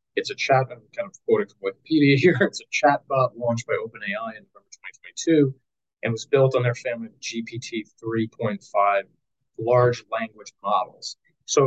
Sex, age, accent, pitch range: male, 30-49, American, 120-195 Hz